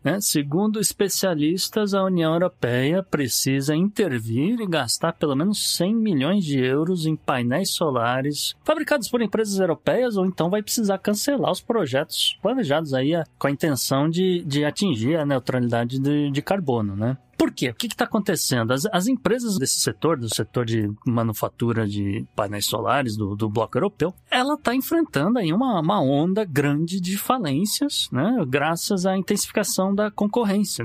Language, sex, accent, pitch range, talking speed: Portuguese, male, Brazilian, 135-205 Hz, 160 wpm